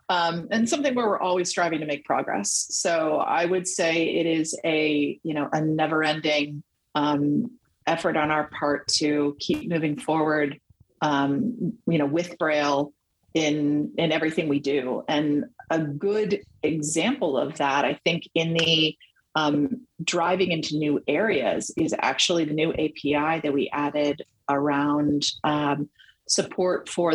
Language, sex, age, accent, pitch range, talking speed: English, female, 30-49, American, 150-170 Hz, 150 wpm